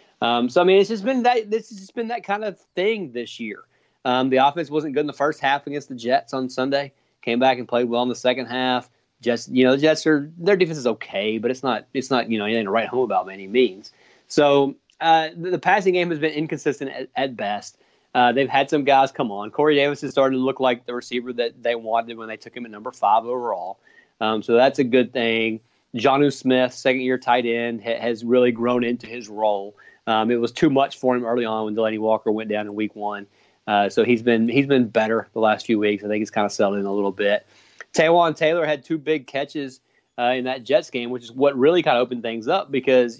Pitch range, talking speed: 115-145 Hz, 255 wpm